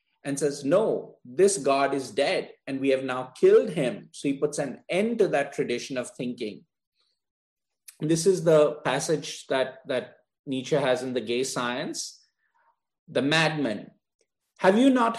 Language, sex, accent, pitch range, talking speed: English, male, Indian, 140-185 Hz, 160 wpm